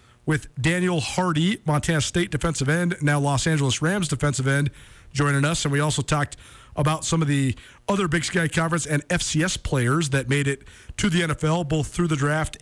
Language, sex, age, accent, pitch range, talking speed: English, male, 40-59, American, 120-160 Hz, 190 wpm